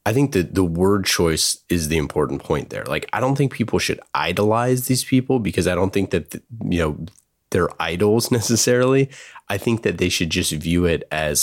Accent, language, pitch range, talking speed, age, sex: American, English, 80-100 Hz, 205 wpm, 30-49, male